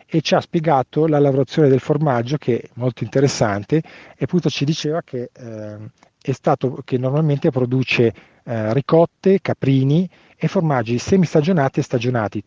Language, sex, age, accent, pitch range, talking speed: Italian, male, 40-59, native, 120-150 Hz, 150 wpm